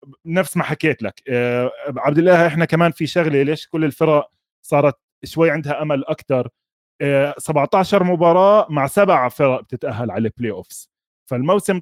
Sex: male